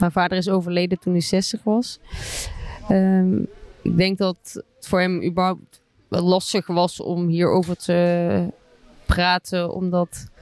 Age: 20-39